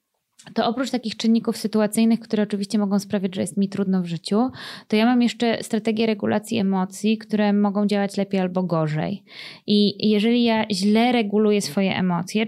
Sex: female